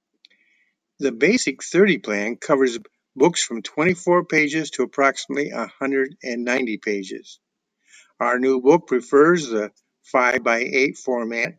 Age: 50-69